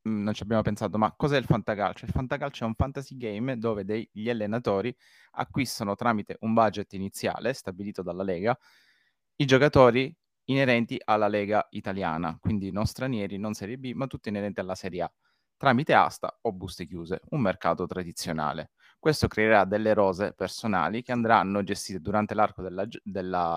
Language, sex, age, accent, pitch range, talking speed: Italian, male, 30-49, native, 100-130 Hz, 165 wpm